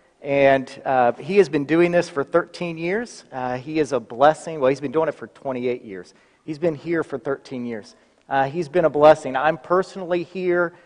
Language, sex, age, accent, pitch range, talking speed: English, male, 40-59, American, 130-175 Hz, 205 wpm